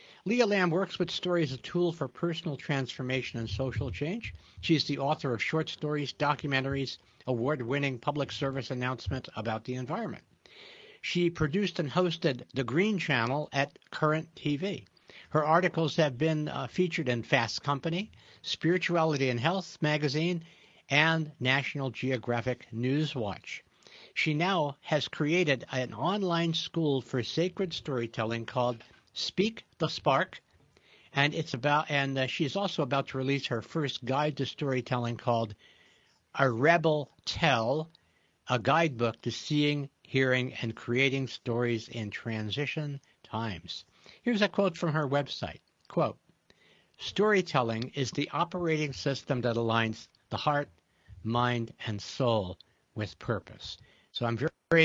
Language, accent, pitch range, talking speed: English, American, 125-160 Hz, 135 wpm